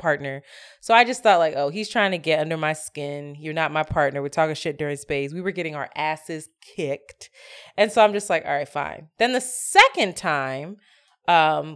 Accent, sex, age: American, female, 20-39